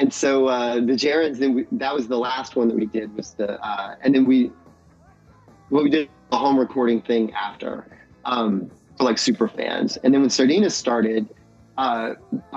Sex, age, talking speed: male, 30-49, 190 wpm